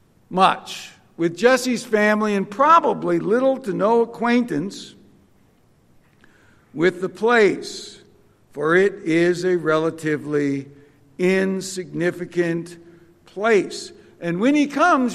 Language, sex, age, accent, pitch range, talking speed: English, male, 60-79, American, 185-240 Hz, 95 wpm